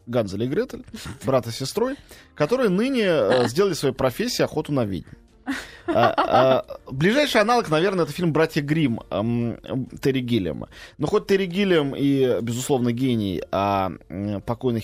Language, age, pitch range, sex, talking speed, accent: Russian, 20-39, 115-160 Hz, male, 130 wpm, native